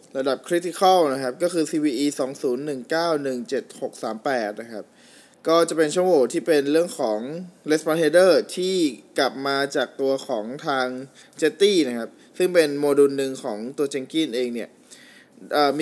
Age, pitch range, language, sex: 20-39, 135-180 Hz, Thai, male